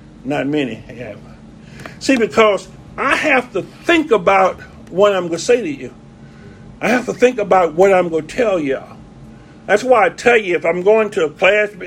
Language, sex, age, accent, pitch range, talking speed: English, male, 50-69, American, 180-250 Hz, 195 wpm